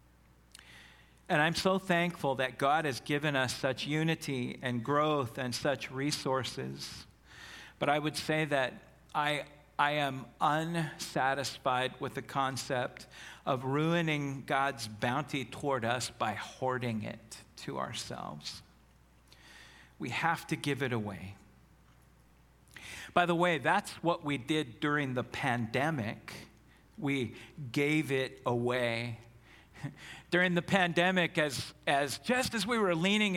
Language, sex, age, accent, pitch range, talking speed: English, male, 50-69, American, 120-165 Hz, 125 wpm